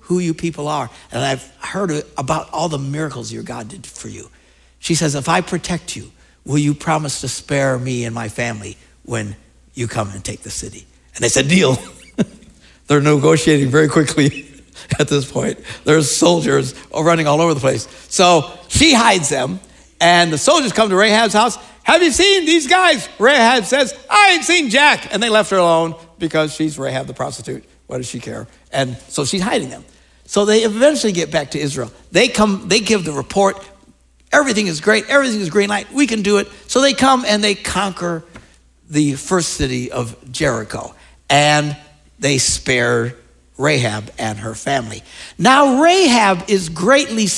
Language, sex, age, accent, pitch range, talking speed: English, male, 60-79, American, 135-215 Hz, 180 wpm